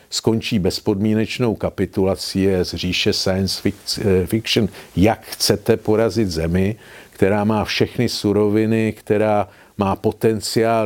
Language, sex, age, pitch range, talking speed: Czech, male, 50-69, 105-115 Hz, 100 wpm